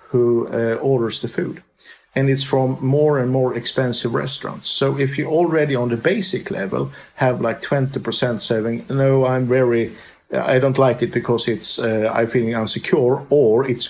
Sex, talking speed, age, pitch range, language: male, 175 wpm, 50-69, 120-145 Hz, English